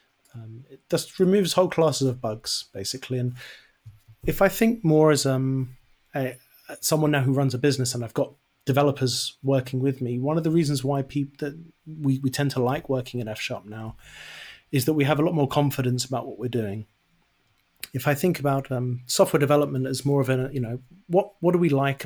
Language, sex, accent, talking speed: English, male, British, 205 wpm